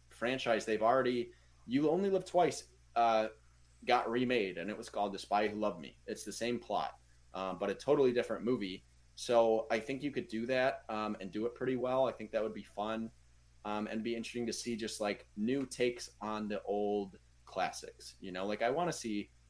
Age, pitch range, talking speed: 30-49, 90-115 Hz, 210 wpm